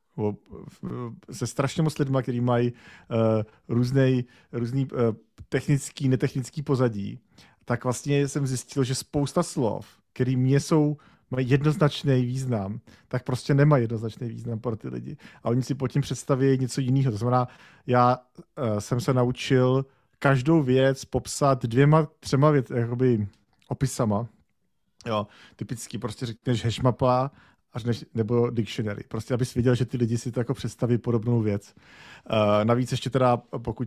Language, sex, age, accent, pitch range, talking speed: Czech, male, 40-59, native, 120-135 Hz, 135 wpm